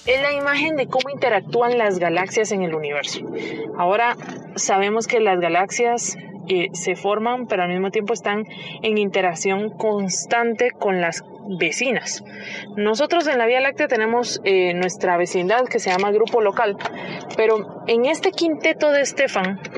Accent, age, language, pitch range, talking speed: Colombian, 20-39, Spanish, 190-235 Hz, 150 wpm